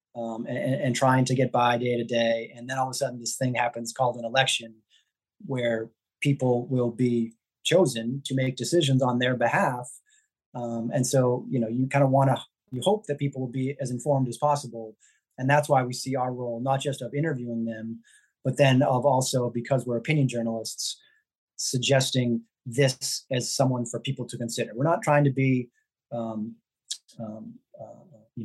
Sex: male